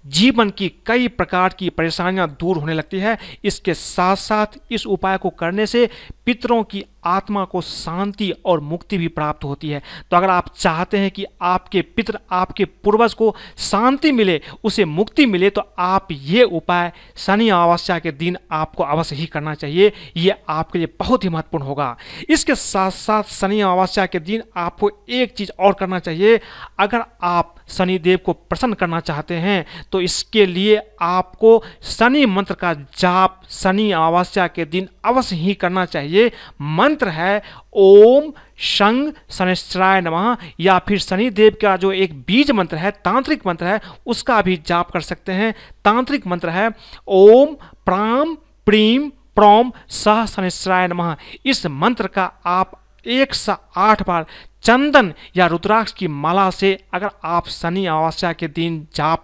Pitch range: 175-215 Hz